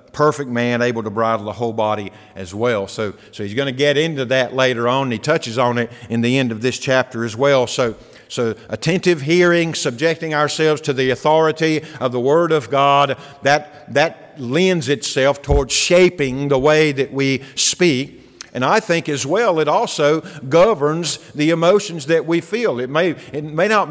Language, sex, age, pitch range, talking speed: English, male, 50-69, 140-175 Hz, 190 wpm